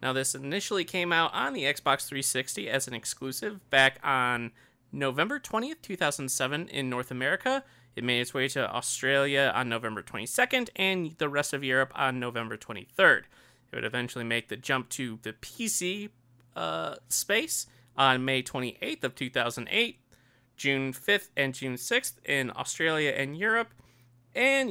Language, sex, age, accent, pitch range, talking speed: English, male, 20-39, American, 120-165 Hz, 155 wpm